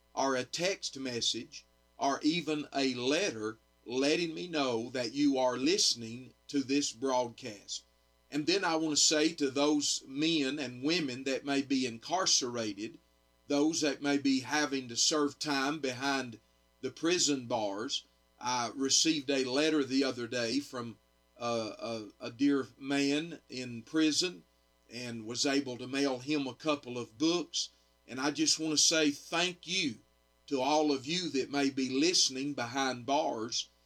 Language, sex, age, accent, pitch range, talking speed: English, male, 40-59, American, 120-150 Hz, 155 wpm